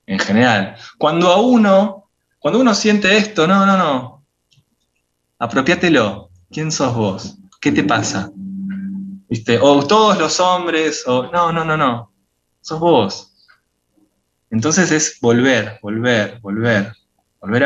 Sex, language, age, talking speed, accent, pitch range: male, Spanish, 20-39, 125 wpm, Argentinian, 95-135 Hz